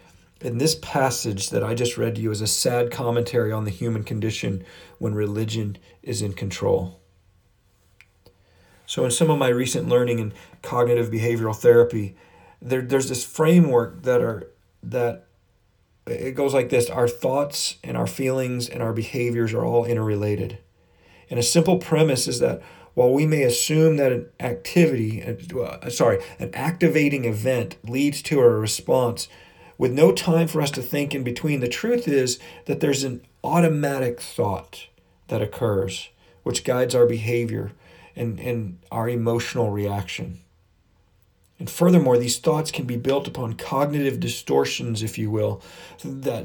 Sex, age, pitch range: male, 40-59, 105-135 Hz